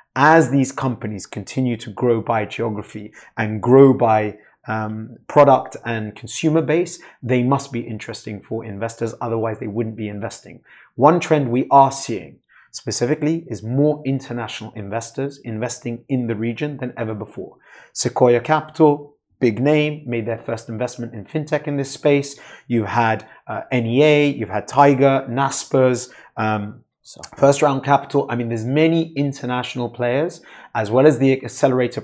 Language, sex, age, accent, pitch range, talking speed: English, male, 30-49, British, 115-140 Hz, 150 wpm